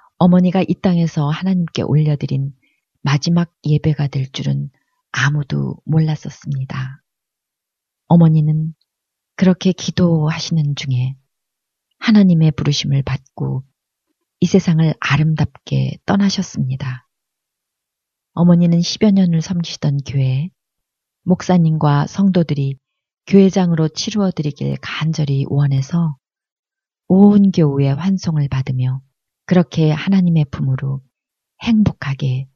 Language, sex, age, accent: Korean, female, 40-59, native